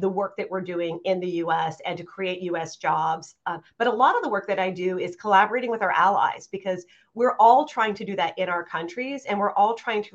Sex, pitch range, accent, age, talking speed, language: female, 185-225 Hz, American, 40-59, 255 wpm, English